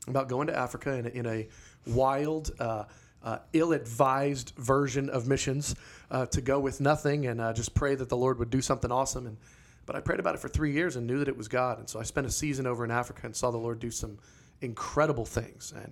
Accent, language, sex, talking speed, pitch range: American, English, male, 235 wpm, 115-135 Hz